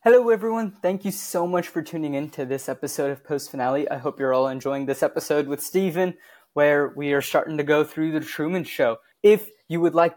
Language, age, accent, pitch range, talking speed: English, 20-39, American, 145-180 Hz, 225 wpm